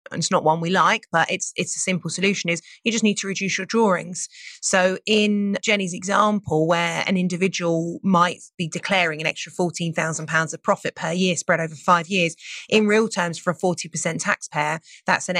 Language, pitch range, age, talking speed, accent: English, 160-190 Hz, 30-49, 200 wpm, British